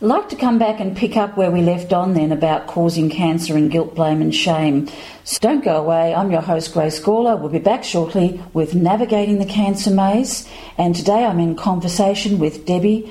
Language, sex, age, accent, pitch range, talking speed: English, female, 40-59, Australian, 170-215 Hz, 205 wpm